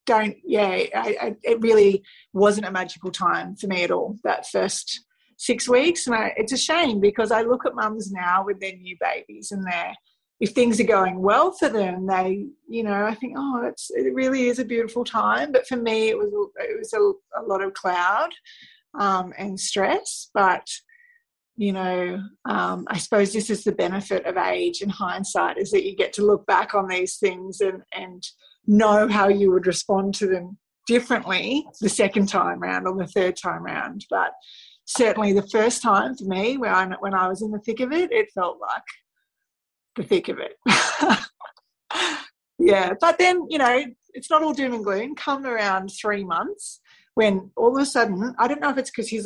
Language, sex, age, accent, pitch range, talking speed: English, female, 30-49, Australian, 195-275 Hz, 200 wpm